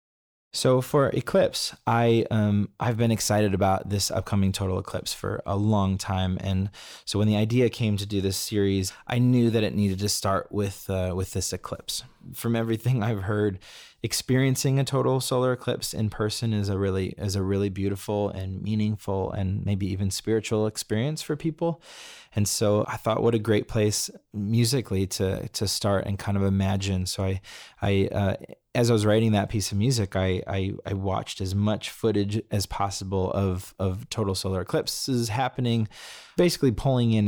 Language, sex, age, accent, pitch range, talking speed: English, male, 20-39, American, 95-115 Hz, 180 wpm